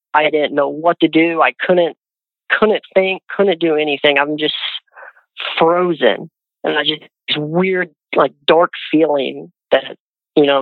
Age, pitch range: 40-59, 145-170 Hz